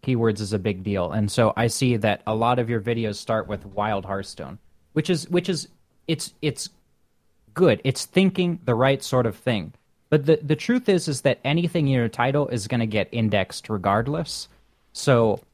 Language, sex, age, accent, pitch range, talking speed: English, male, 30-49, American, 105-140 Hz, 195 wpm